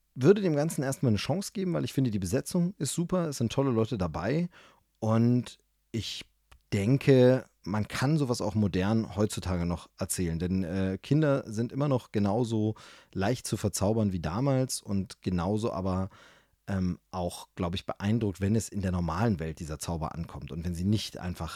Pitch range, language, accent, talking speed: 95-130 Hz, German, German, 180 wpm